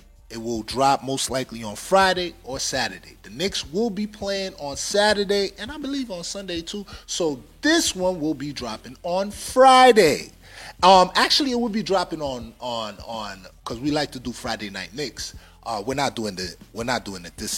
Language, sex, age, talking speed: English, male, 30-49, 195 wpm